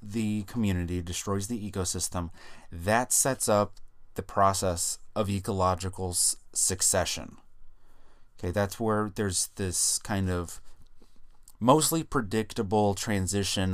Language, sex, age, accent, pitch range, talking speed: English, male, 30-49, American, 90-110 Hz, 100 wpm